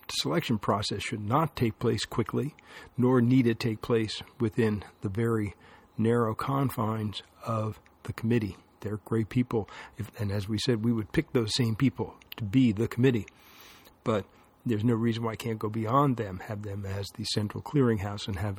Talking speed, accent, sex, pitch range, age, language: 180 wpm, American, male, 105-125 Hz, 50-69, English